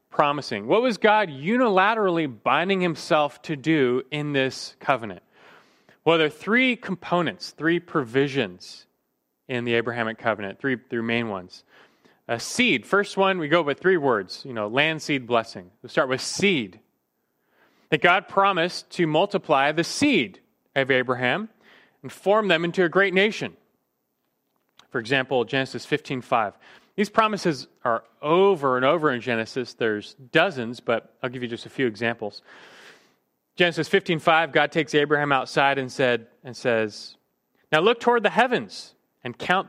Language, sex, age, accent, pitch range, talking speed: English, male, 30-49, American, 120-180 Hz, 155 wpm